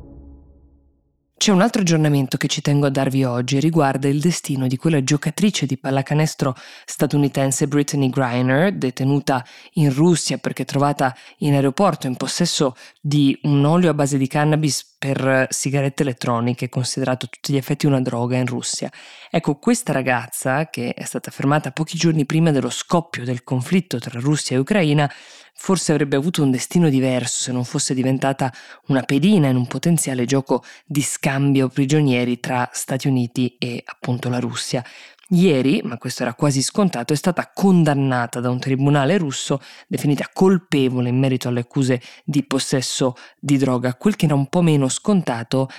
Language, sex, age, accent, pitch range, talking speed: Italian, female, 20-39, native, 130-155 Hz, 160 wpm